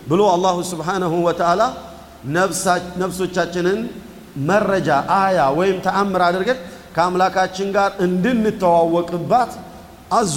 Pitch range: 155-190 Hz